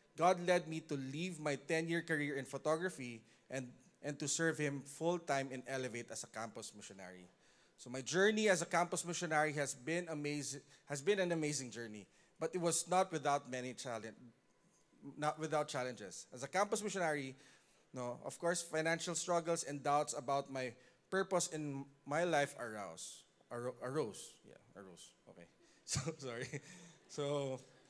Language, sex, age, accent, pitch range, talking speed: English, male, 20-39, Filipino, 135-175 Hz, 160 wpm